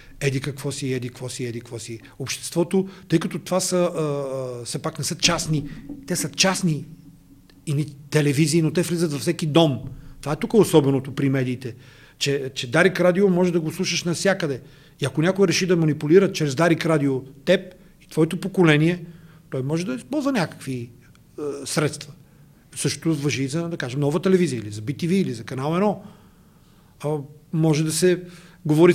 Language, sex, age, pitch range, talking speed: Bulgarian, male, 40-59, 140-170 Hz, 180 wpm